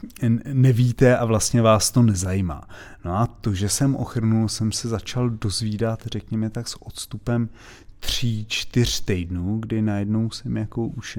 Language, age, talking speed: Czech, 30-49, 150 wpm